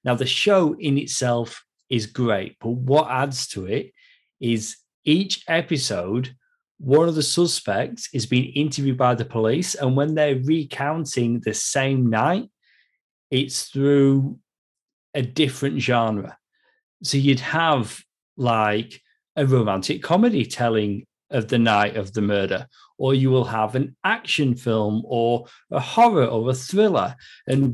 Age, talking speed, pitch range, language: 40-59, 140 wpm, 120-155 Hz, English